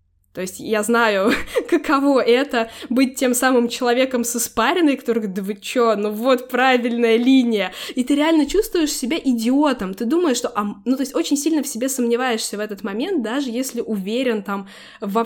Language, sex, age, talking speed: Russian, female, 20-39, 180 wpm